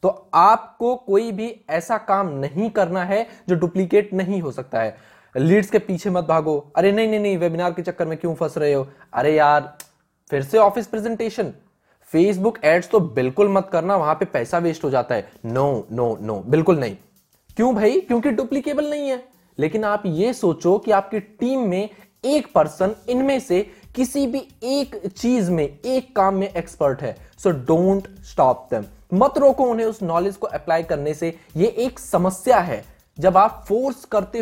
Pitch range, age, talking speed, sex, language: 170-240 Hz, 20-39, 185 wpm, male, Hindi